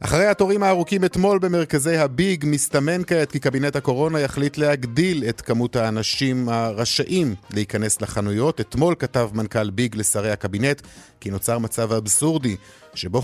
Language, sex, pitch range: Hebrew, male, 110-150 Hz